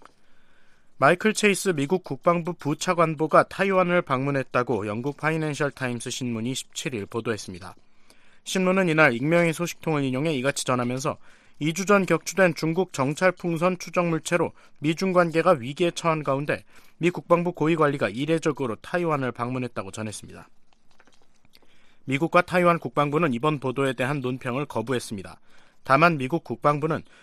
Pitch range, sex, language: 125-170 Hz, male, Korean